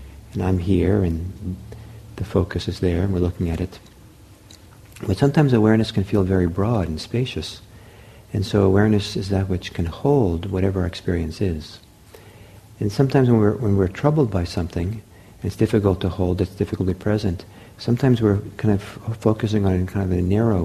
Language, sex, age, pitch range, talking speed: English, male, 50-69, 95-110 Hz, 190 wpm